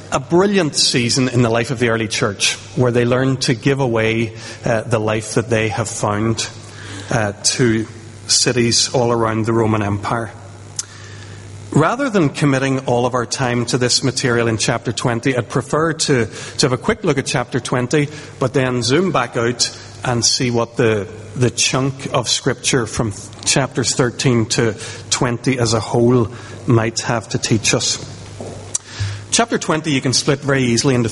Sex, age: male, 40-59